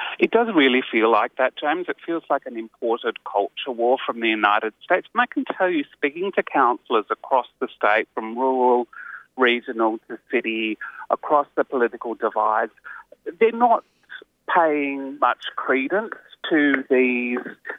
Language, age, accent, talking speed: English, 30-49, British, 150 wpm